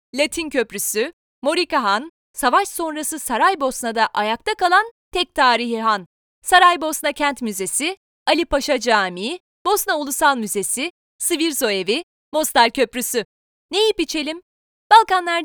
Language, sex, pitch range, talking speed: Turkish, female, 250-360 Hz, 110 wpm